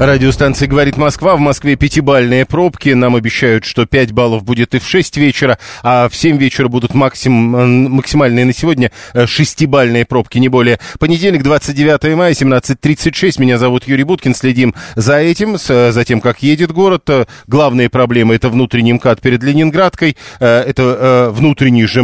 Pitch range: 125-145 Hz